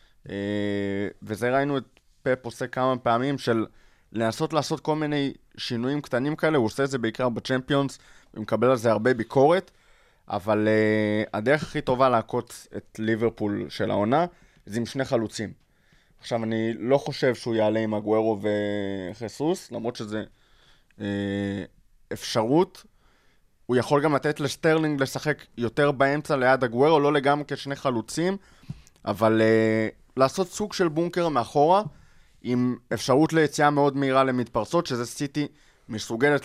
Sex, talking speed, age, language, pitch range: male, 140 wpm, 20-39, Hebrew, 110-145 Hz